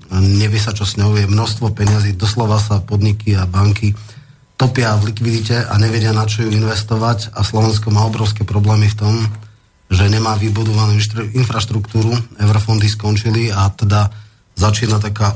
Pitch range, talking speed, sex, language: 105-110 Hz, 150 wpm, male, Slovak